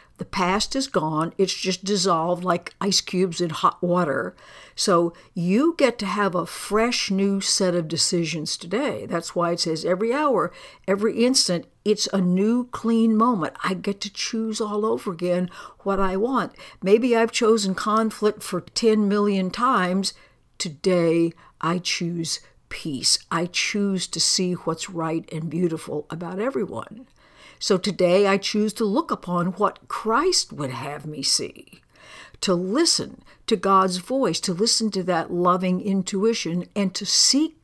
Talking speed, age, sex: 155 wpm, 60-79, female